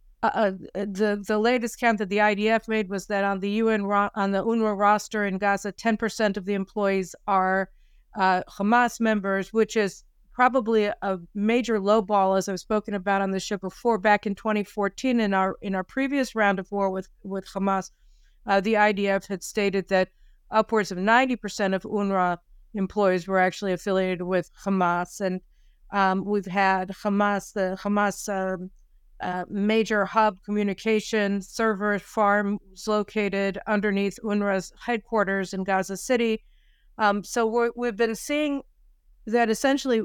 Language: English